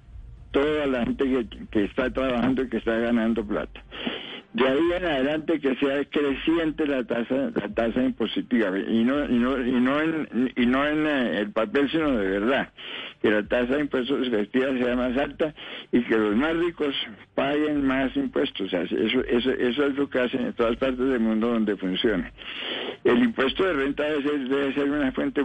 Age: 60-79